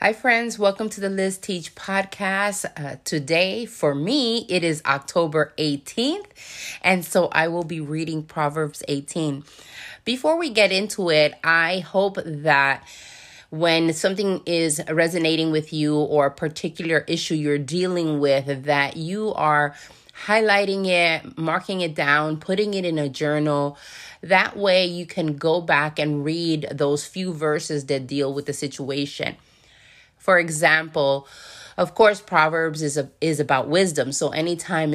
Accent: American